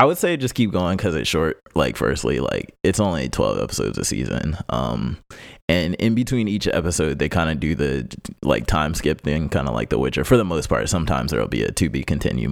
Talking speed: 235 wpm